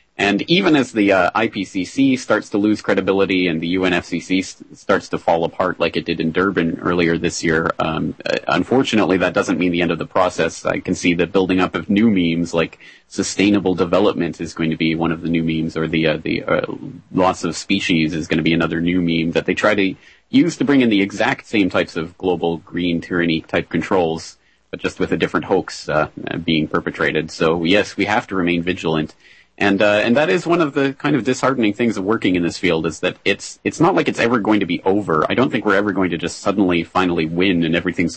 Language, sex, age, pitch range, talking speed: English, male, 30-49, 85-100 Hz, 230 wpm